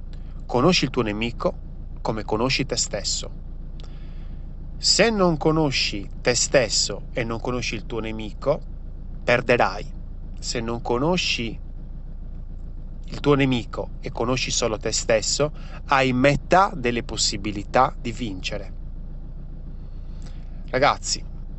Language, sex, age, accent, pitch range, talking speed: Italian, male, 30-49, native, 110-145 Hz, 105 wpm